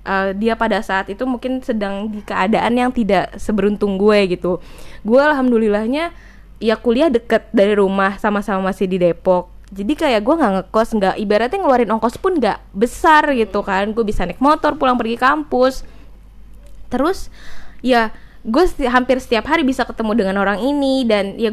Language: Indonesian